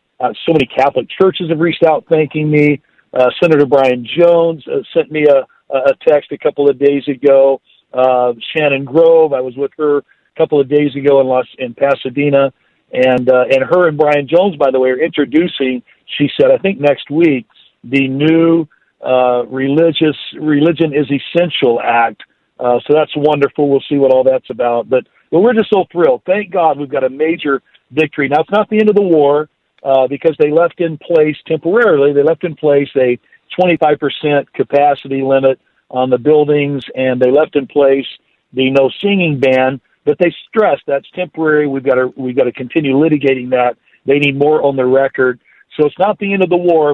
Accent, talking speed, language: American, 190 wpm, English